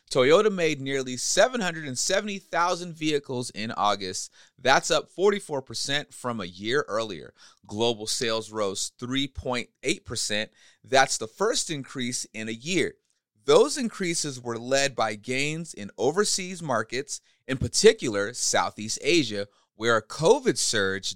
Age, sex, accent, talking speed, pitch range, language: 30-49, male, American, 120 wpm, 110-155 Hz, English